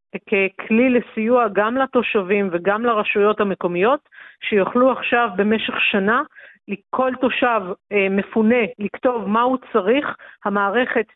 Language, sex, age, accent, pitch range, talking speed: Hebrew, female, 50-69, native, 200-250 Hz, 100 wpm